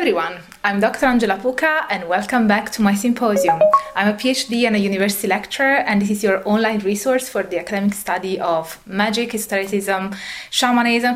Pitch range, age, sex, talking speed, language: 195-250 Hz, 20-39, female, 175 wpm, English